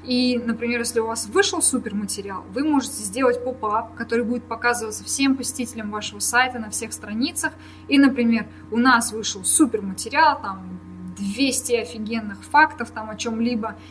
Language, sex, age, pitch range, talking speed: Russian, female, 20-39, 215-270 Hz, 145 wpm